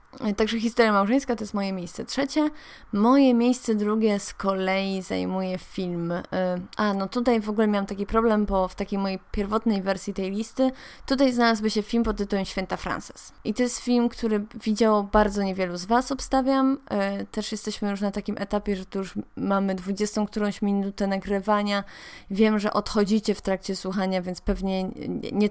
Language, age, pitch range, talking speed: Polish, 20-39, 195-230 Hz, 170 wpm